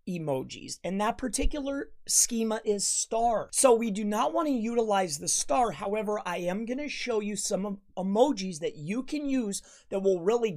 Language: English